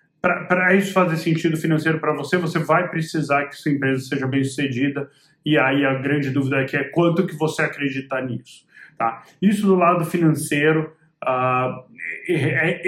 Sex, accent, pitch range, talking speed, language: male, Brazilian, 140-170 Hz, 155 wpm, Portuguese